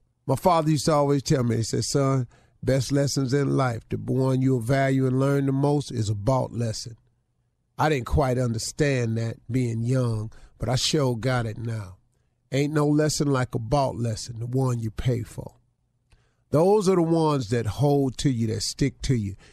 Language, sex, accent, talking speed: English, male, American, 195 wpm